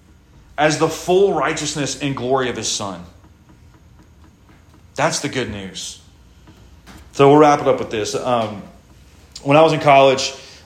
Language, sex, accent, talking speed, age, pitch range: English, male, American, 150 wpm, 30-49, 110-155 Hz